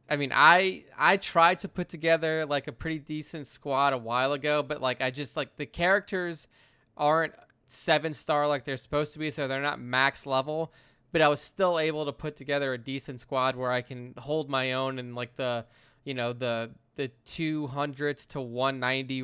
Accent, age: American, 20-39